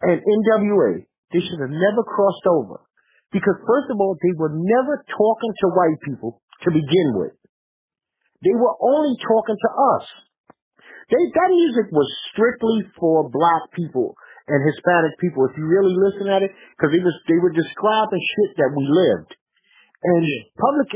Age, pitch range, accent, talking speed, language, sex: 50-69, 160-230 Hz, American, 160 wpm, English, male